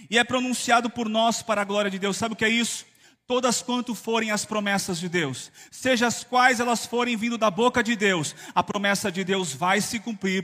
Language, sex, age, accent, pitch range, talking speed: Portuguese, male, 30-49, Brazilian, 185-245 Hz, 225 wpm